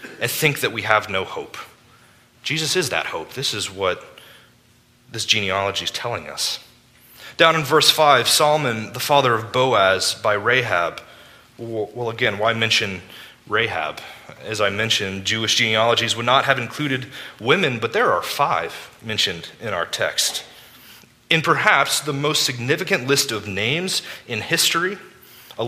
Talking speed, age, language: 150 wpm, 30-49, English